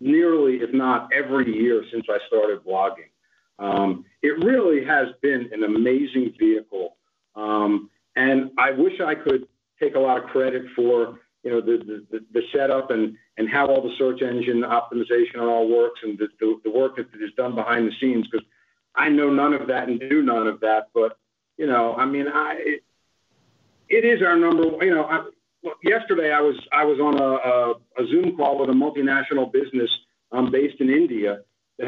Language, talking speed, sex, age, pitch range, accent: English, 195 wpm, male, 50-69, 115-150 Hz, American